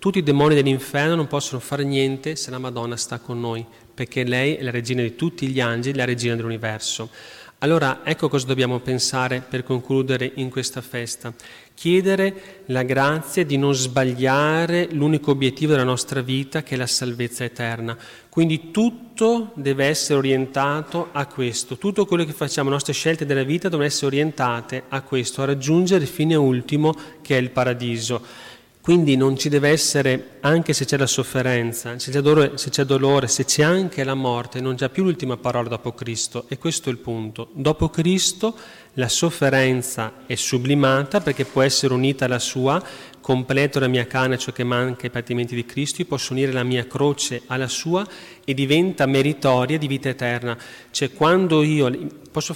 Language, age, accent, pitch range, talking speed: Italian, 30-49, native, 125-150 Hz, 175 wpm